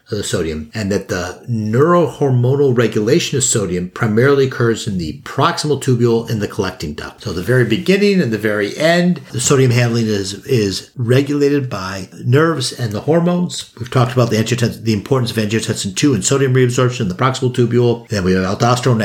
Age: 50-69